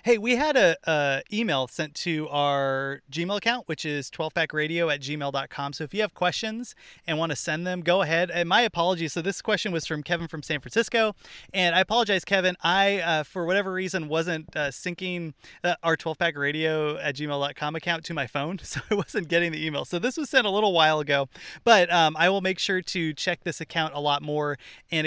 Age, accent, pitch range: 30-49, American, 145-185 Hz